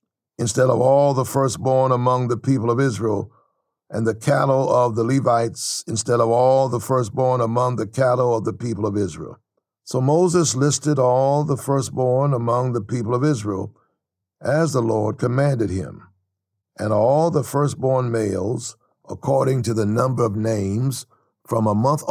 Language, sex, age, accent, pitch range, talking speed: English, male, 60-79, American, 110-135 Hz, 160 wpm